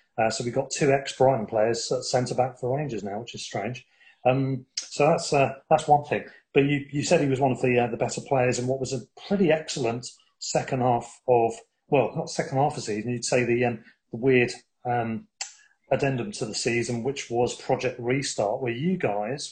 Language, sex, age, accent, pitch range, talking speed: English, male, 40-59, British, 120-135 Hz, 210 wpm